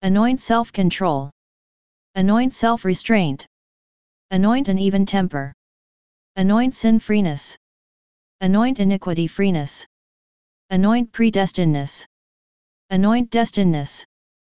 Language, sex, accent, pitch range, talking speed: English, female, American, 175-225 Hz, 75 wpm